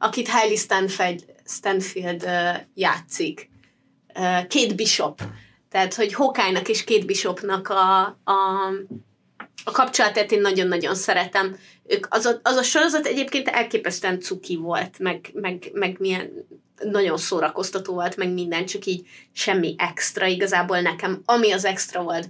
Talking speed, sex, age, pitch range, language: 135 wpm, female, 20-39, 190-225 Hz, Hungarian